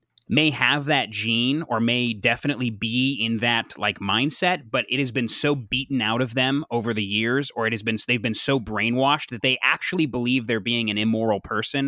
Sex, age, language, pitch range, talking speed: male, 30-49, English, 110-135 Hz, 205 wpm